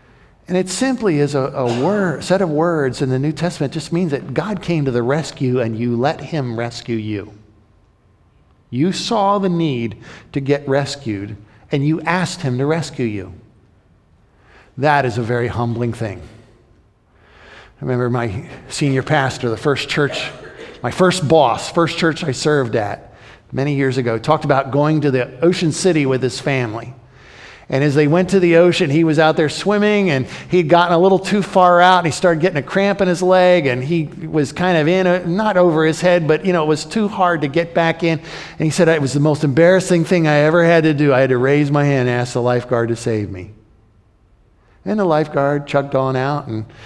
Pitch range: 120-165 Hz